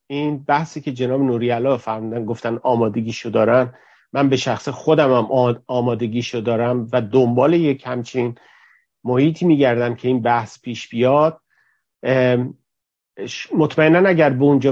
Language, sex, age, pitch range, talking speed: Persian, male, 50-69, 125-180 Hz, 120 wpm